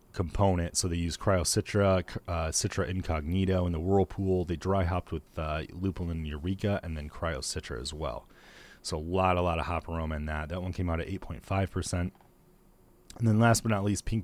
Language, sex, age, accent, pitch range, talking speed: English, male, 30-49, American, 80-95 Hz, 200 wpm